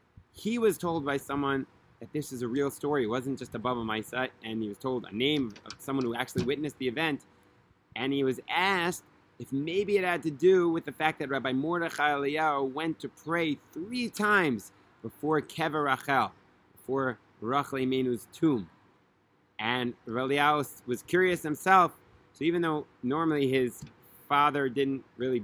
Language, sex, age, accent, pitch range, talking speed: English, male, 30-49, American, 125-155 Hz, 170 wpm